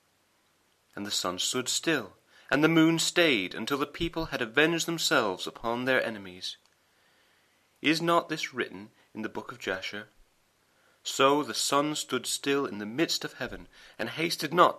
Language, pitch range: English, 110-165 Hz